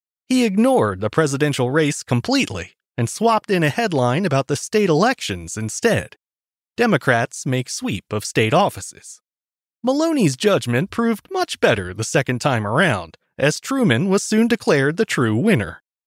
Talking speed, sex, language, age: 145 wpm, male, English, 30-49